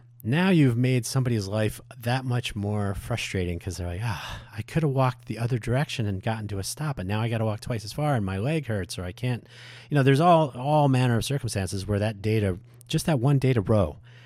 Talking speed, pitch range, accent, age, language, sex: 245 wpm, 95-120 Hz, American, 40-59, English, male